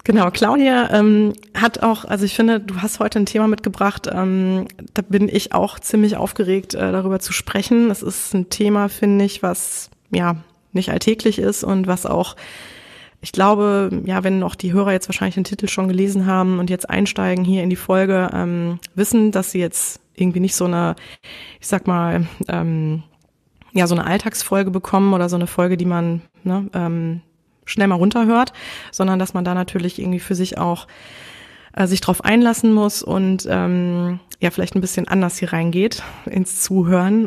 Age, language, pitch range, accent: 20-39, German, 180-205 Hz, German